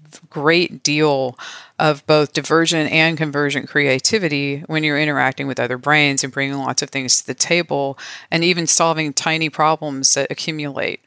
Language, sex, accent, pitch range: English, female, American, 140-160 Hz